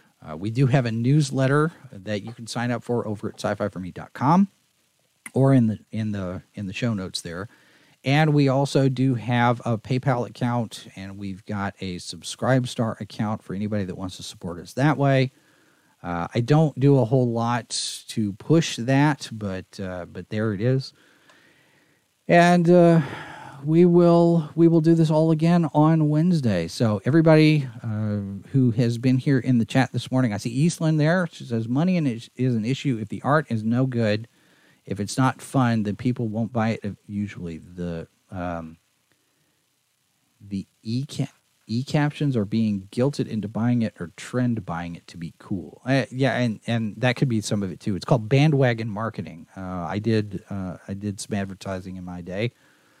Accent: American